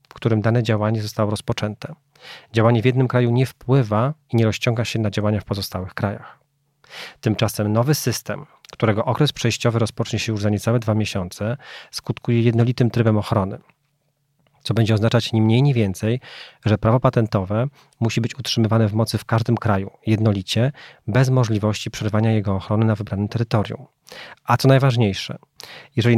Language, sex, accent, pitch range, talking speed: Polish, male, native, 105-125 Hz, 160 wpm